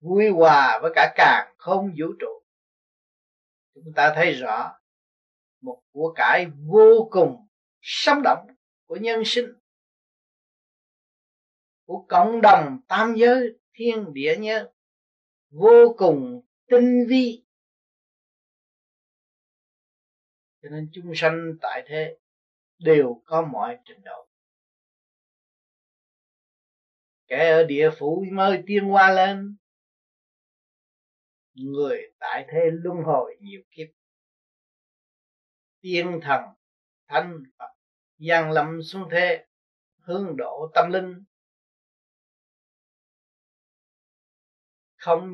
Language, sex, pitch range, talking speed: Vietnamese, male, 160-230 Hz, 95 wpm